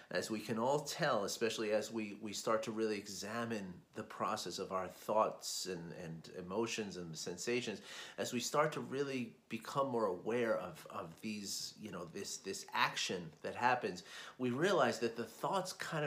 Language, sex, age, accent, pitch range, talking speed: English, male, 30-49, American, 105-135 Hz, 180 wpm